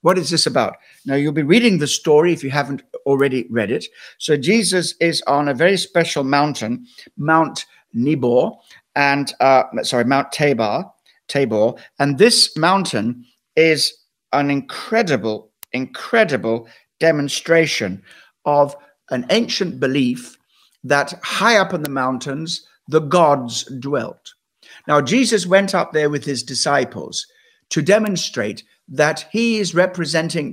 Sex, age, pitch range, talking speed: male, 60-79, 145-195 Hz, 130 wpm